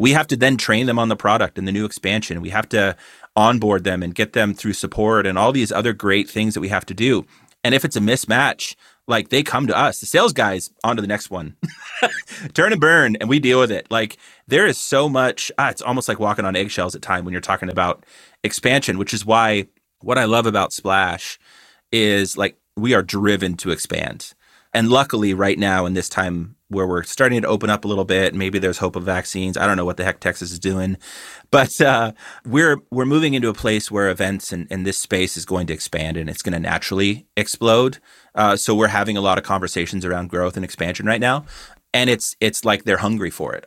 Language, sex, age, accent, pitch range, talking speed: English, male, 30-49, American, 95-110 Hz, 230 wpm